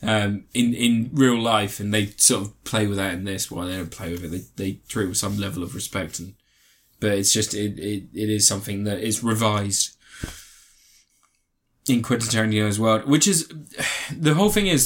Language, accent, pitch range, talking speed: English, British, 105-120 Hz, 215 wpm